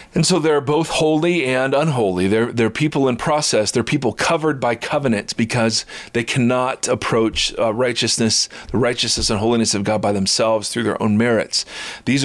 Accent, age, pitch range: American, 40-59, 110-145 Hz